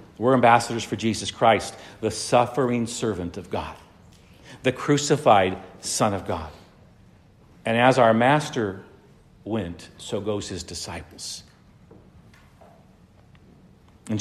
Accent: American